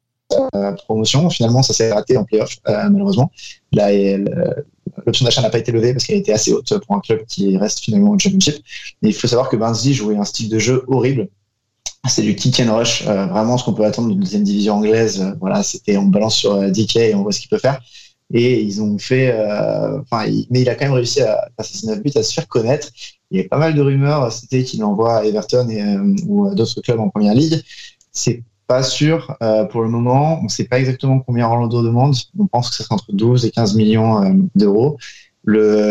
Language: French